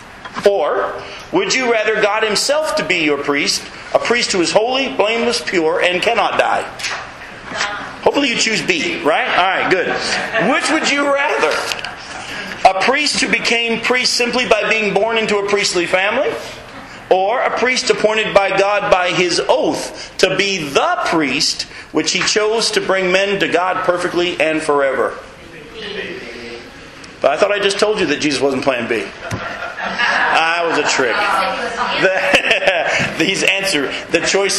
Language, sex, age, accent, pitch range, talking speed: English, male, 40-59, American, 150-215 Hz, 155 wpm